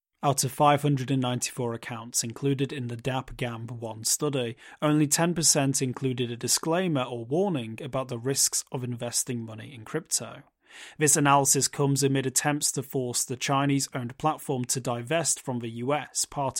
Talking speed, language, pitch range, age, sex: 150 wpm, English, 125-150 Hz, 30-49, male